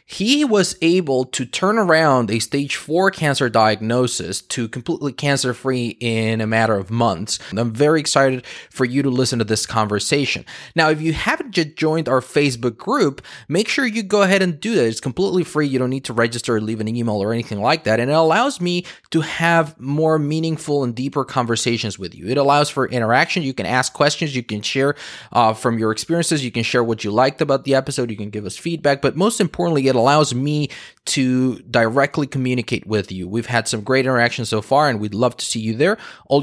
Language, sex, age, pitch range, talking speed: English, male, 20-39, 115-150 Hz, 215 wpm